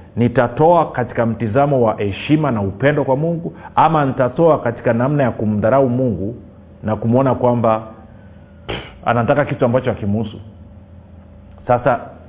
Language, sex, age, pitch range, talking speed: Swahili, male, 40-59, 105-145 Hz, 120 wpm